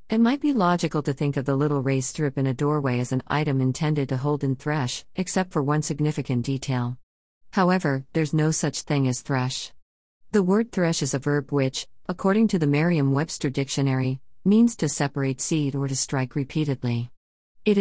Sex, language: female, English